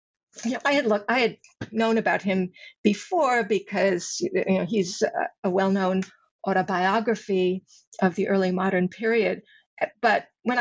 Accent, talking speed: American, 155 wpm